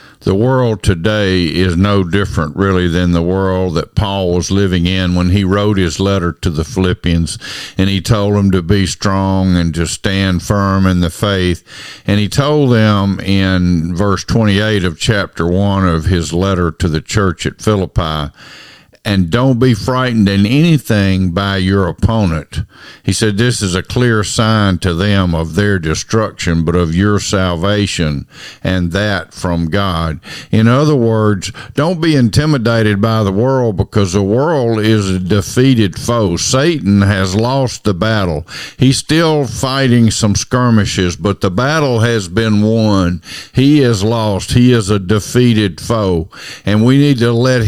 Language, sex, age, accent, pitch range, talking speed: English, male, 50-69, American, 90-115 Hz, 160 wpm